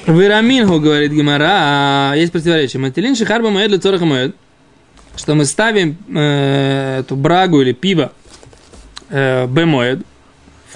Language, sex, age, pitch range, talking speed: Russian, male, 20-39, 155-230 Hz, 110 wpm